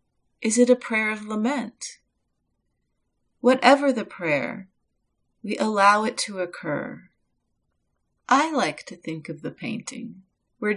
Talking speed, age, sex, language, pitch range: 125 wpm, 40-59, female, English, 190-245 Hz